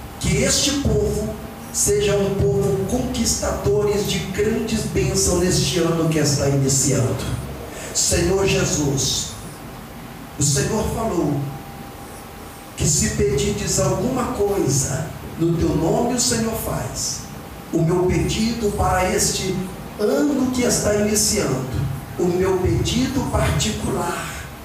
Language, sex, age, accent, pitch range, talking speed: Portuguese, male, 50-69, Brazilian, 140-190 Hz, 105 wpm